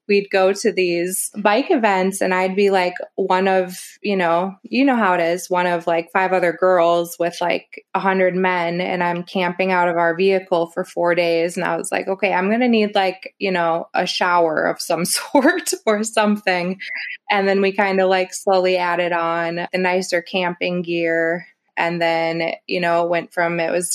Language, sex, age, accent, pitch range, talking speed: English, female, 20-39, American, 175-195 Hz, 200 wpm